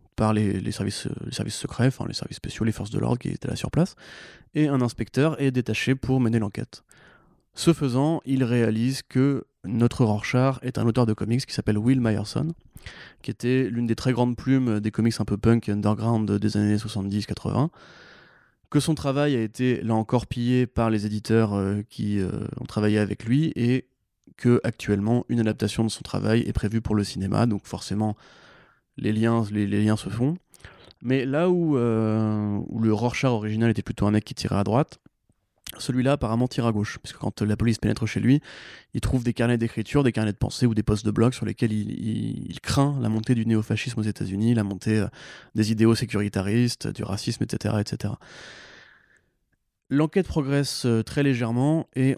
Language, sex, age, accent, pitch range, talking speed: French, male, 20-39, French, 105-130 Hz, 195 wpm